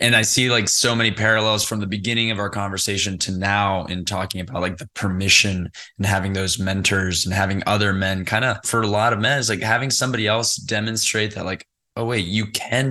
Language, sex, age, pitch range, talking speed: English, male, 20-39, 95-110 Hz, 225 wpm